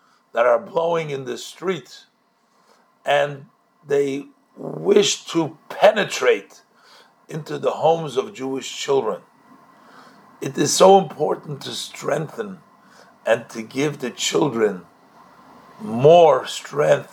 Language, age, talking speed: English, 50-69, 105 wpm